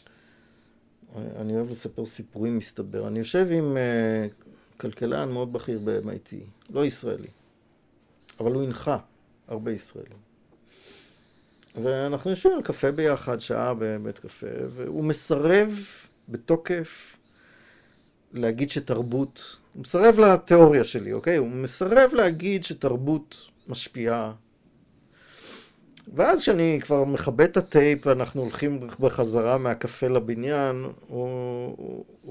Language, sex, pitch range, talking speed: Hebrew, male, 115-160 Hz, 100 wpm